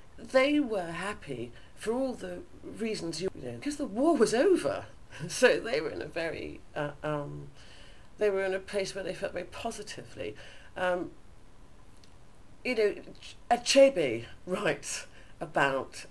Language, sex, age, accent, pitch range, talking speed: English, female, 40-59, British, 125-175 Hz, 140 wpm